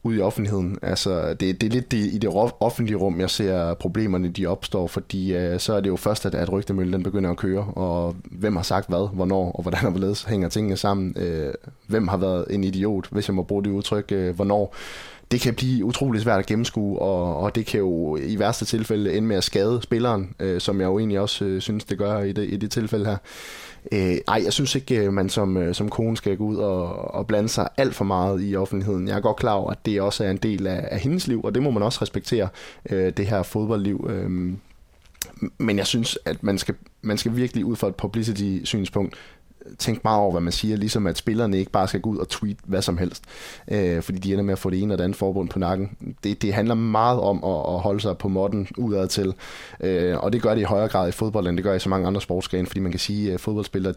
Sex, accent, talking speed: male, native, 240 wpm